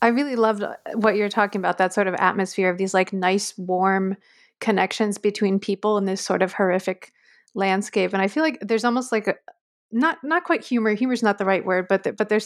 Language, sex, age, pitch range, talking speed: English, female, 30-49, 185-210 Hz, 220 wpm